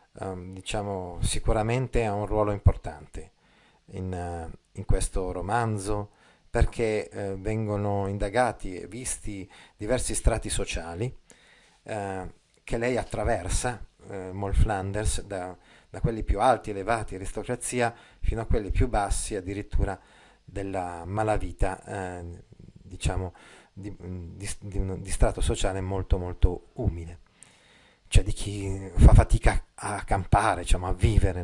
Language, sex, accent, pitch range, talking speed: Italian, male, native, 95-110 Hz, 120 wpm